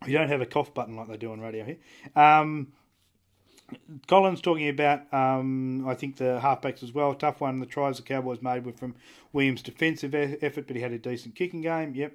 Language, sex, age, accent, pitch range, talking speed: English, male, 30-49, Australian, 120-140 Hz, 215 wpm